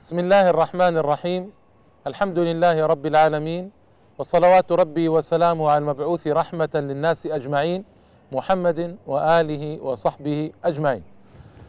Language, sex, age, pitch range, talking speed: Arabic, male, 40-59, 145-180 Hz, 105 wpm